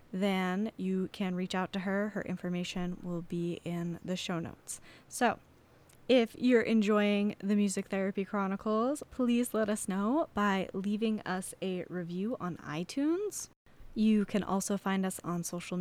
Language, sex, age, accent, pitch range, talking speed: English, female, 10-29, American, 185-220 Hz, 155 wpm